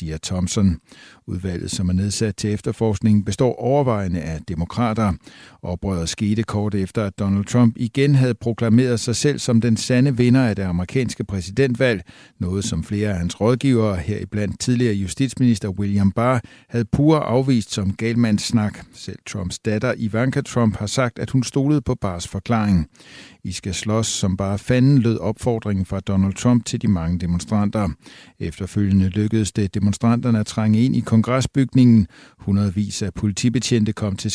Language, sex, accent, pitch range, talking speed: Danish, male, native, 100-125 Hz, 155 wpm